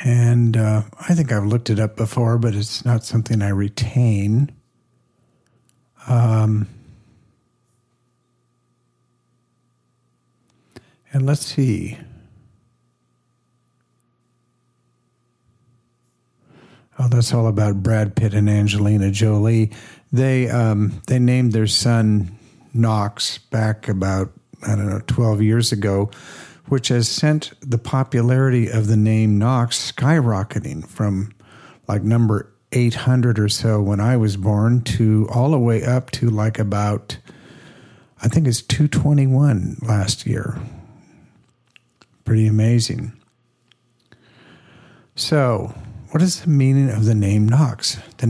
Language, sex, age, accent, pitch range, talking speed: English, male, 50-69, American, 110-125 Hz, 110 wpm